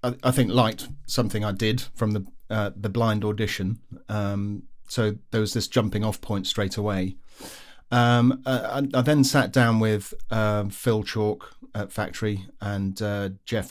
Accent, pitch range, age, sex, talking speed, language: British, 100-125 Hz, 40-59, male, 160 wpm, English